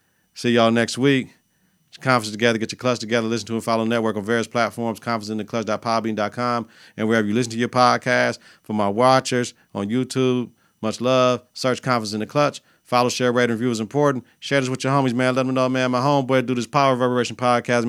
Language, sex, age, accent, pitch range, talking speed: English, male, 40-59, American, 110-130 Hz, 210 wpm